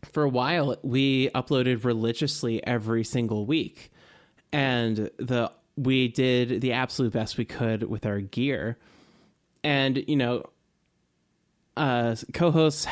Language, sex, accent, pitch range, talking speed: English, male, American, 115-140 Hz, 120 wpm